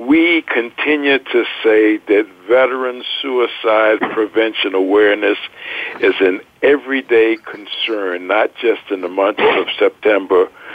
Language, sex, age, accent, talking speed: English, male, 60-79, American, 110 wpm